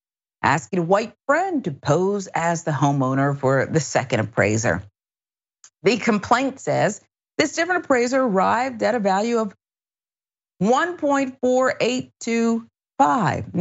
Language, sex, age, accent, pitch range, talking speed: English, female, 50-69, American, 155-235 Hz, 110 wpm